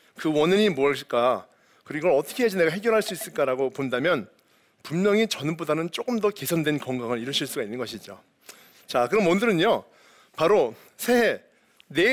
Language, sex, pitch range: Korean, male, 155-230 Hz